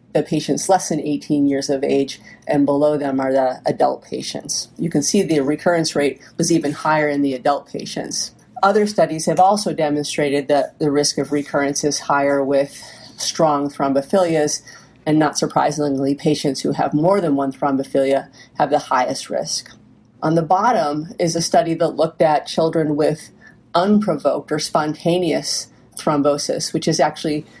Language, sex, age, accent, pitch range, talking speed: English, female, 30-49, American, 145-165 Hz, 165 wpm